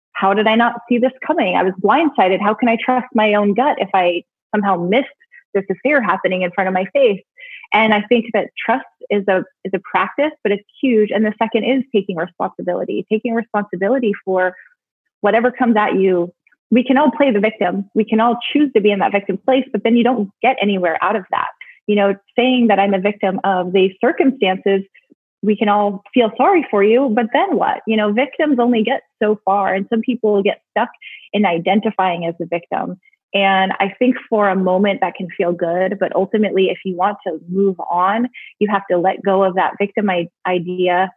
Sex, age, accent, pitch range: female, 20-39, American, 190-235 Hz